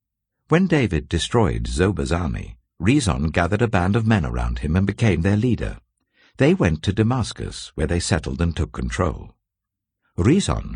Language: English